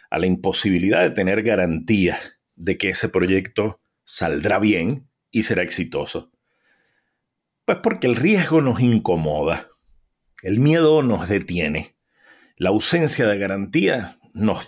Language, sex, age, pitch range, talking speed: English, male, 40-59, 90-120 Hz, 125 wpm